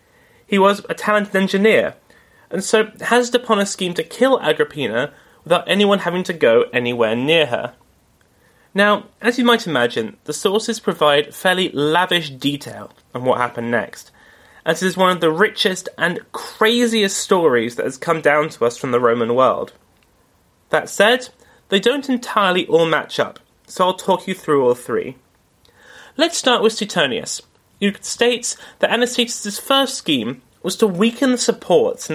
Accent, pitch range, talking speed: British, 160-235 Hz, 165 wpm